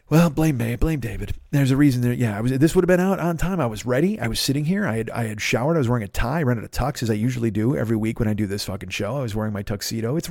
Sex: male